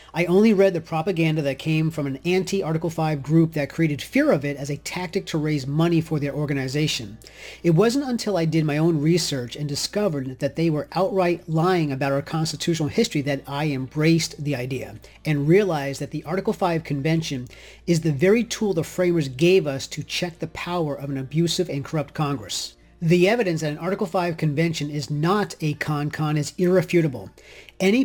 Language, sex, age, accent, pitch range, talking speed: English, male, 40-59, American, 145-185 Hz, 190 wpm